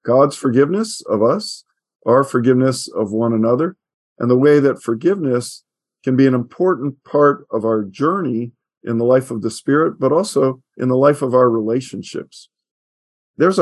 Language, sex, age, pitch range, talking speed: English, male, 50-69, 120-145 Hz, 165 wpm